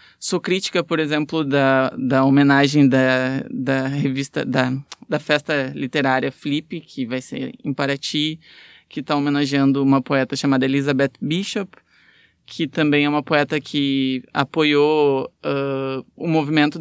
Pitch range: 140-170 Hz